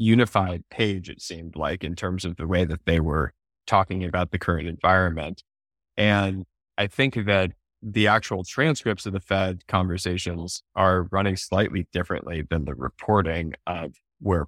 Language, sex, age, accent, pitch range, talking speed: English, male, 20-39, American, 85-105 Hz, 160 wpm